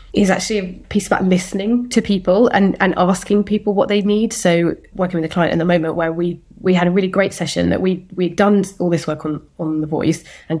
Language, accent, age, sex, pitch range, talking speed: English, British, 20-39, female, 160-195 Hz, 245 wpm